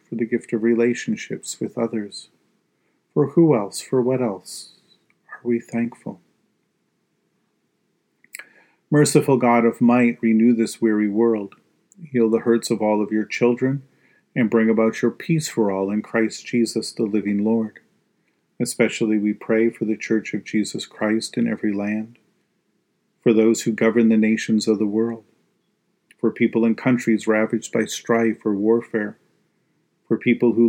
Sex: male